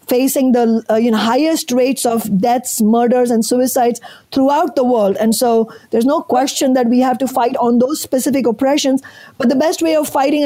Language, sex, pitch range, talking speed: English, female, 245-290 Hz, 200 wpm